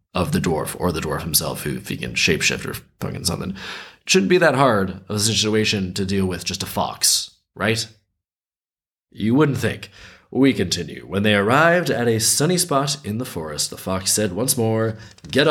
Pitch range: 105-165 Hz